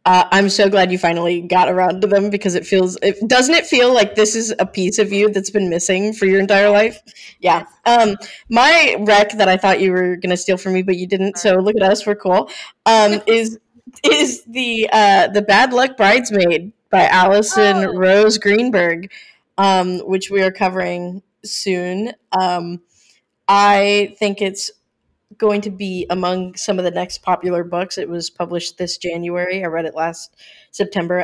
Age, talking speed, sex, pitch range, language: 10-29, 180 wpm, female, 180-215 Hz, English